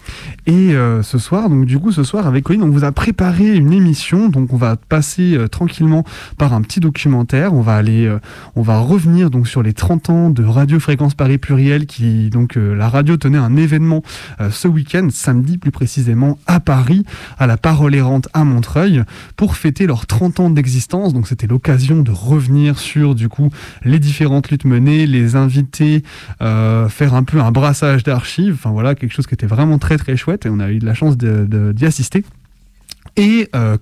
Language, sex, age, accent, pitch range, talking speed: French, male, 20-39, French, 125-155 Hz, 210 wpm